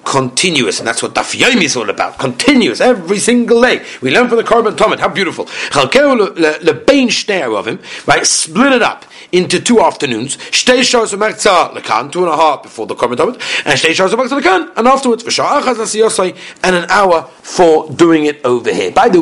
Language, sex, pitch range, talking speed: English, male, 155-225 Hz, 160 wpm